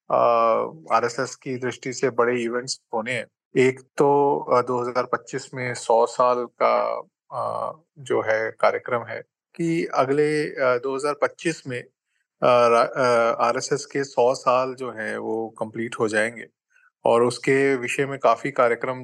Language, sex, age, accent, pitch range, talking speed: Hindi, male, 30-49, native, 115-140 Hz, 125 wpm